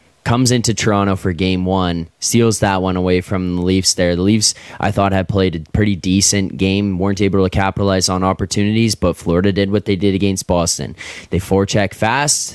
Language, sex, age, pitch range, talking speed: English, male, 10-29, 90-100 Hz, 195 wpm